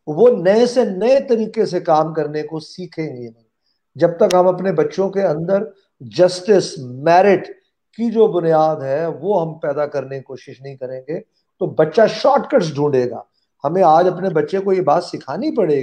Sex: male